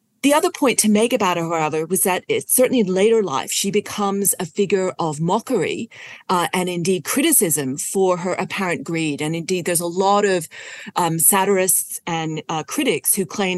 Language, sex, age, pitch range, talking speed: English, female, 40-59, 160-200 Hz, 180 wpm